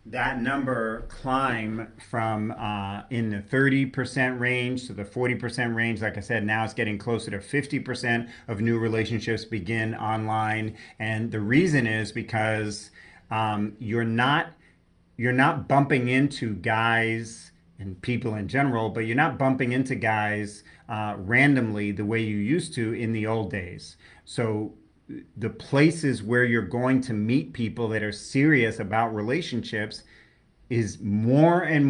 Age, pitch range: 40-59, 105-125 Hz